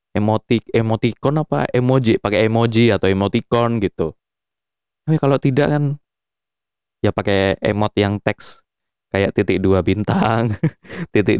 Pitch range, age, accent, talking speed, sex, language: 100-135 Hz, 20-39, native, 120 wpm, male, Indonesian